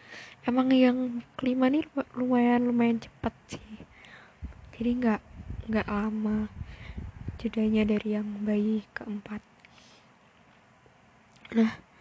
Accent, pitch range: native, 225-270 Hz